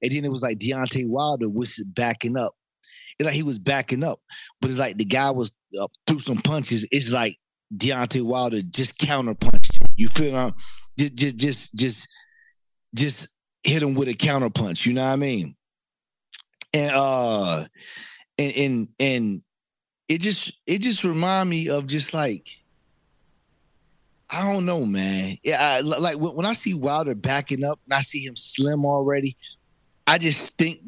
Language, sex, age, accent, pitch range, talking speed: English, male, 30-49, American, 120-150 Hz, 165 wpm